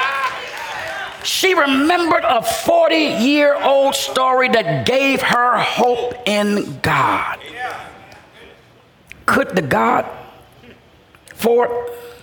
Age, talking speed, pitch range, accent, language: 50-69, 75 wpm, 175-275 Hz, American, English